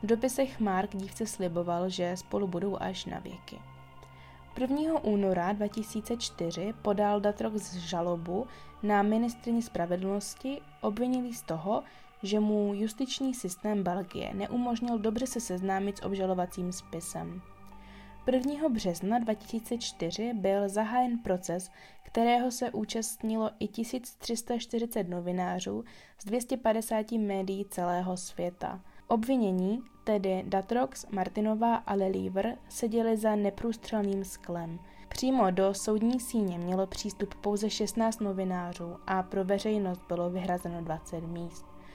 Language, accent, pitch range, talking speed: Czech, native, 180-225 Hz, 115 wpm